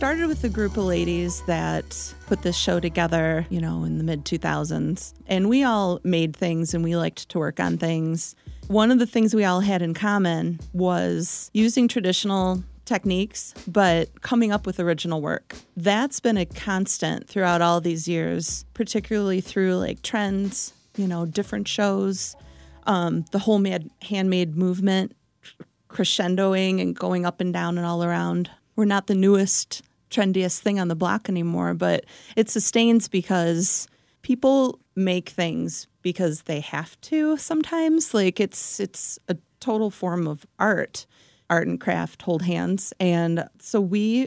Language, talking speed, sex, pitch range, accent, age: English, 155 wpm, female, 170-210 Hz, American, 30-49